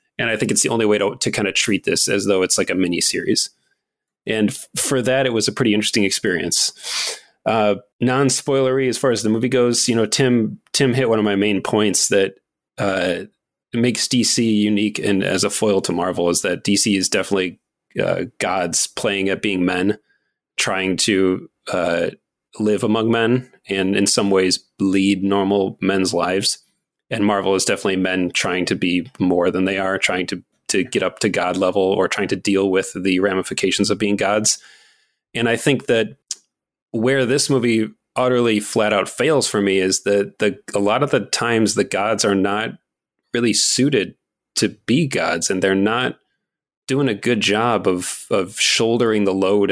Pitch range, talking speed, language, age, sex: 95-115 Hz, 190 wpm, English, 30-49, male